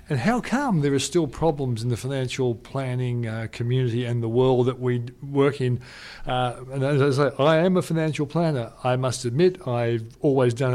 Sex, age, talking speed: male, 50-69, 200 wpm